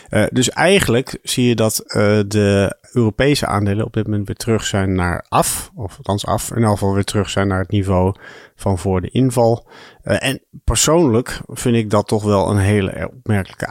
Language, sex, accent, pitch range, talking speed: Dutch, male, Dutch, 100-115 Hz, 195 wpm